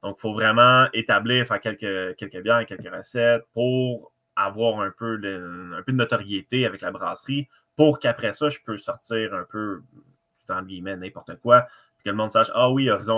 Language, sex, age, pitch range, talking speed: French, male, 20-39, 100-125 Hz, 200 wpm